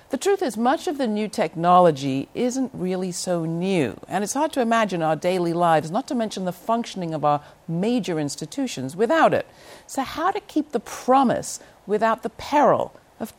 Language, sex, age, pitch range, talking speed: English, female, 50-69, 155-230 Hz, 185 wpm